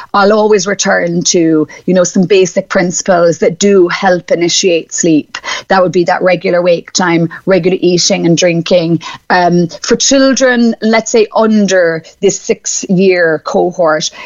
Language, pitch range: English, 175-205 Hz